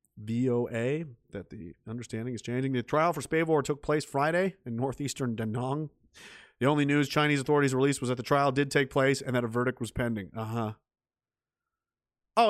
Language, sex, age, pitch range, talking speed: English, male, 30-49, 120-175 Hz, 180 wpm